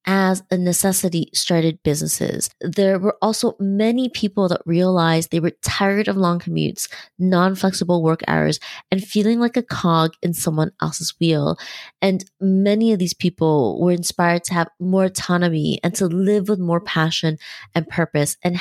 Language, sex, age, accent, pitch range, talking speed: English, female, 20-39, American, 165-195 Hz, 160 wpm